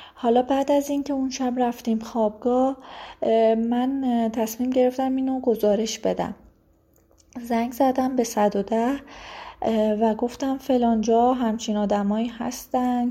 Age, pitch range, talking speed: 30-49, 215-260 Hz, 125 wpm